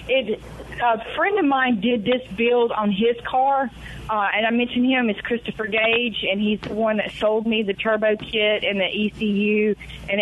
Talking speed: 195 wpm